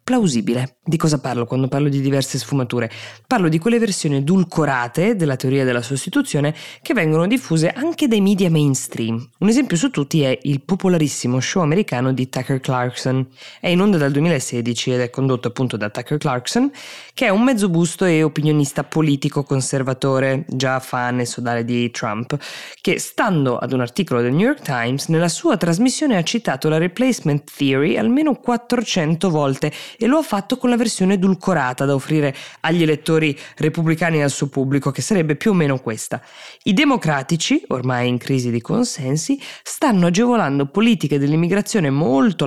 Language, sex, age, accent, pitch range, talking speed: Italian, female, 20-39, native, 130-195 Hz, 170 wpm